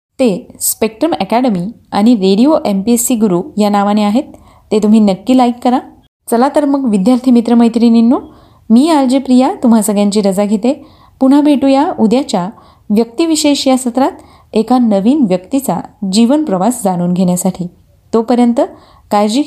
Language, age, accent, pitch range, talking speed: Marathi, 20-39, native, 210-285 Hz, 135 wpm